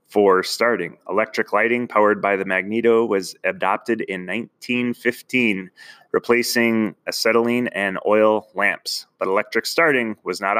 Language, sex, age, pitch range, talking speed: English, male, 20-39, 95-120 Hz, 125 wpm